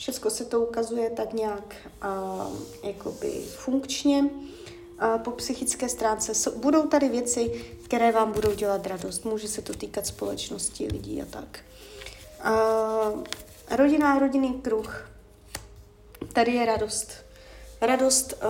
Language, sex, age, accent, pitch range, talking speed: Czech, female, 30-49, native, 220-265 Hz, 125 wpm